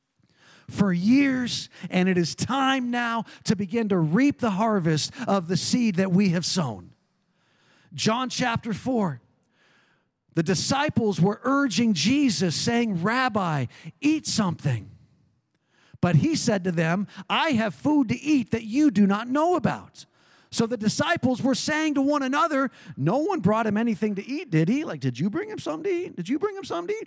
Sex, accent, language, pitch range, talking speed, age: male, American, English, 165-235 Hz, 175 wpm, 40-59